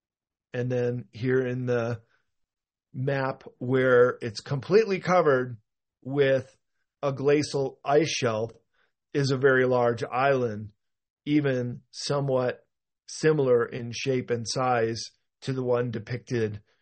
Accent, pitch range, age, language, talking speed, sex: American, 120-145 Hz, 50-69, English, 110 wpm, male